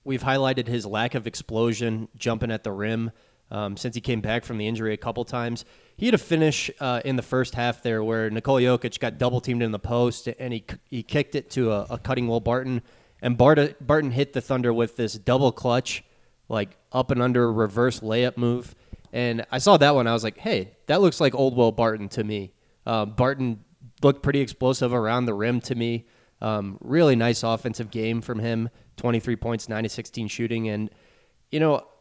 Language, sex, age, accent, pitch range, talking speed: English, male, 20-39, American, 115-130 Hz, 210 wpm